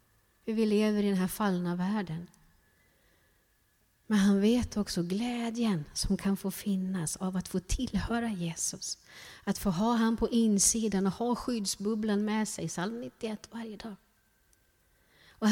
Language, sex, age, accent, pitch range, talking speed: Swedish, female, 30-49, native, 165-230 Hz, 145 wpm